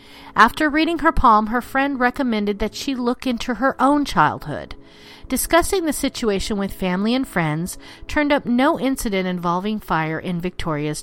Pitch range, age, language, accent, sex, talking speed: 175-260 Hz, 40-59, English, American, female, 160 wpm